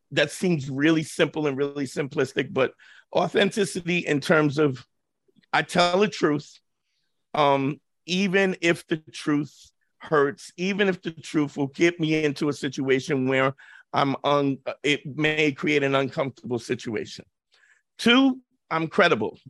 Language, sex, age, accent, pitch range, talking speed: English, male, 50-69, American, 145-185 Hz, 135 wpm